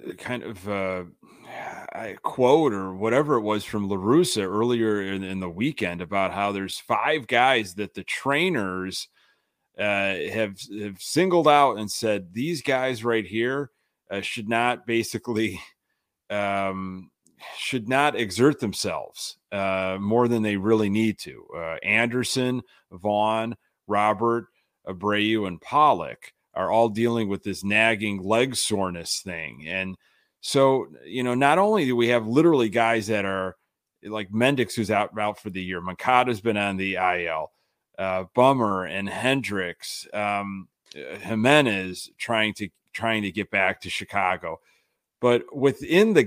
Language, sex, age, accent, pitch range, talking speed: English, male, 30-49, American, 100-125 Hz, 145 wpm